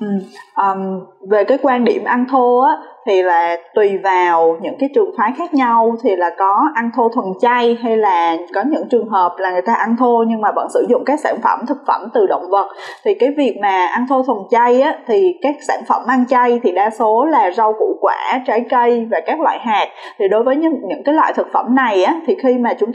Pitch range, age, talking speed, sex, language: 220-290 Hz, 10-29, 245 wpm, female, Vietnamese